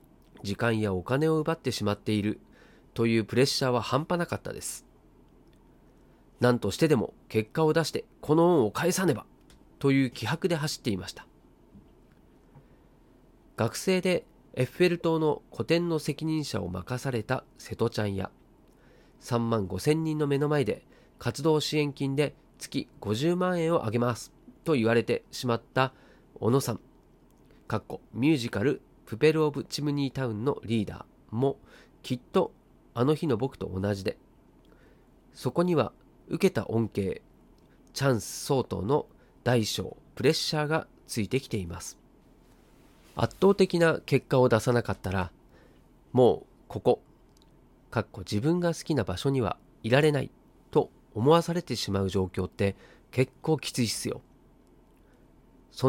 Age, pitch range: 40-59, 110-155 Hz